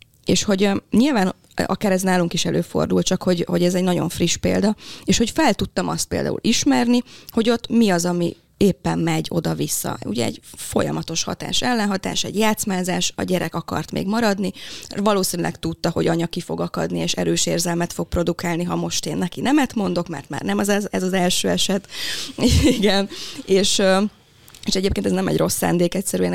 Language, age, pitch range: Hungarian, 20-39, 170-205 Hz